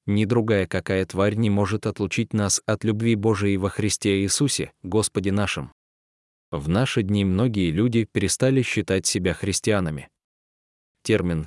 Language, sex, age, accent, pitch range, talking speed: Russian, male, 20-39, native, 90-115 Hz, 135 wpm